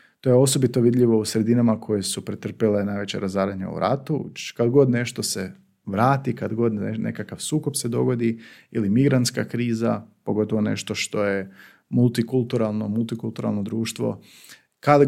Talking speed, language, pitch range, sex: 140 wpm, Croatian, 105-130 Hz, male